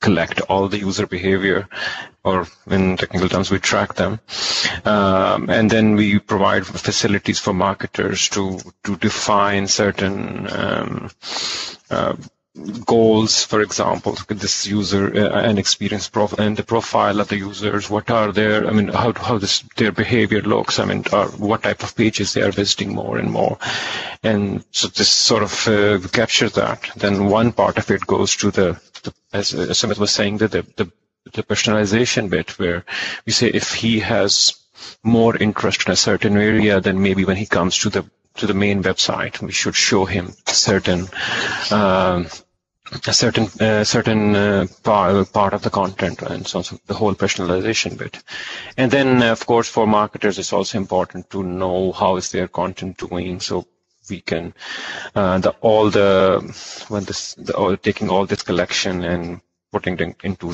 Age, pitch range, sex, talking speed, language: 40-59, 95-110 Hz, male, 170 wpm, English